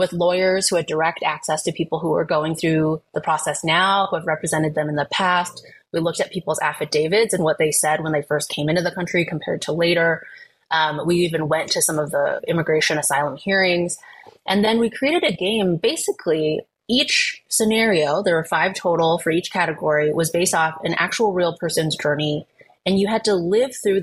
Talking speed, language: 205 wpm, English